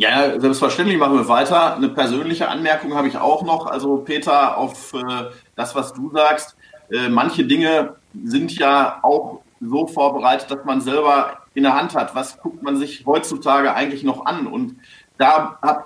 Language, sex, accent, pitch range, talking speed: German, male, German, 135-165 Hz, 165 wpm